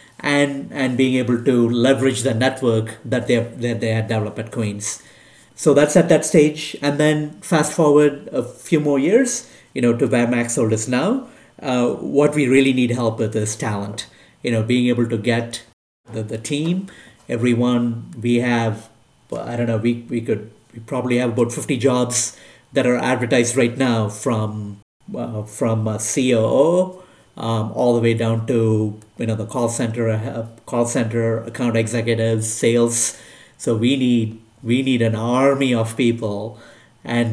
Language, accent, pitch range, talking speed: English, Indian, 110-130 Hz, 170 wpm